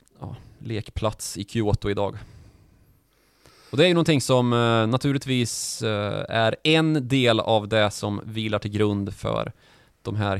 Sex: male